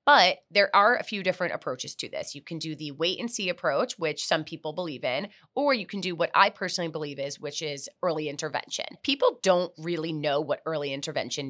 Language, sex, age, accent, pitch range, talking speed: English, female, 30-49, American, 155-200 Hz, 220 wpm